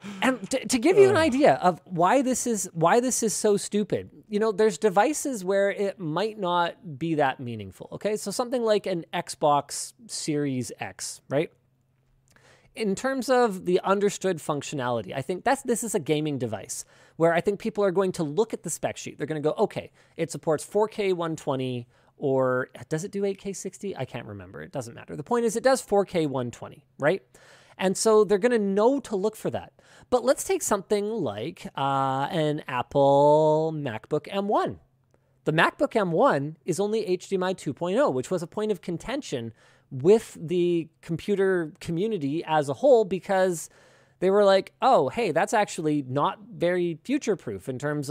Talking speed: 180 wpm